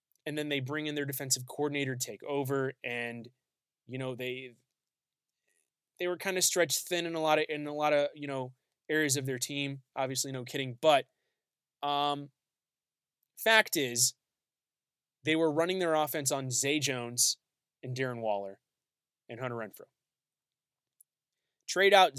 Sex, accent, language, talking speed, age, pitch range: male, American, English, 155 wpm, 20-39, 130-165 Hz